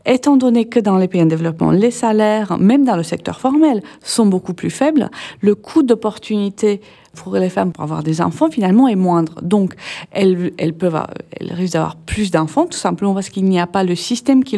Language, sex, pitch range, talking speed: French, female, 175-225 Hz, 215 wpm